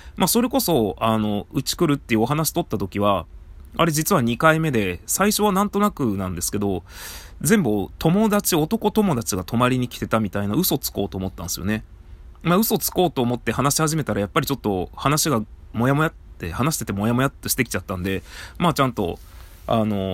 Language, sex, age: Japanese, male, 20-39